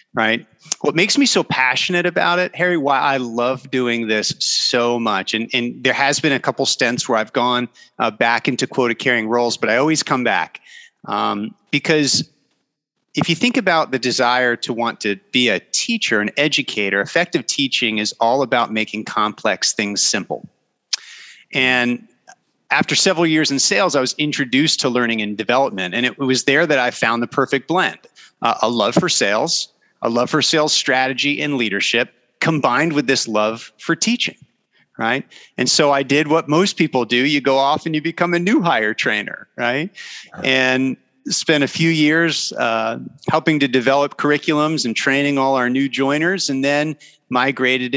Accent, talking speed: American, 180 wpm